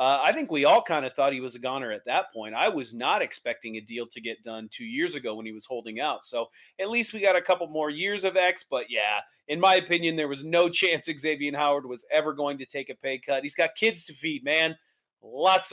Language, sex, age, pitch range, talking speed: English, male, 30-49, 140-185 Hz, 265 wpm